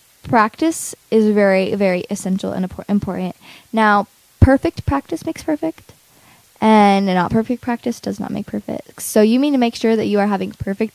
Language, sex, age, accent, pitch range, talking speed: English, female, 10-29, American, 205-235 Hz, 175 wpm